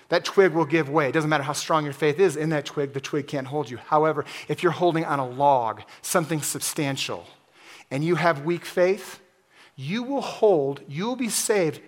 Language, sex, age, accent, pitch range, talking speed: English, male, 30-49, American, 150-180 Hz, 210 wpm